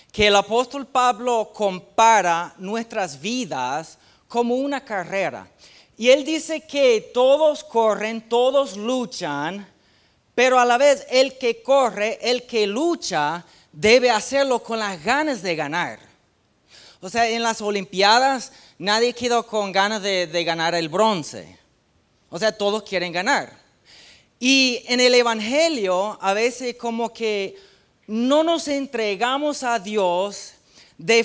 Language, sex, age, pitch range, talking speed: Spanish, male, 40-59, 190-250 Hz, 130 wpm